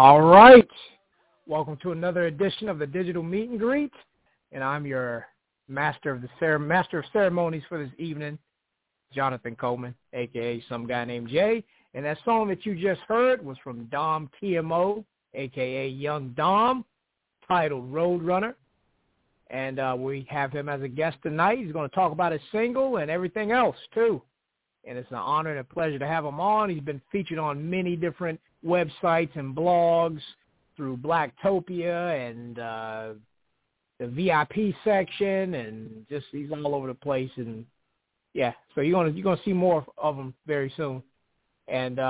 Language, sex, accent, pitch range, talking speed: English, male, American, 130-180 Hz, 165 wpm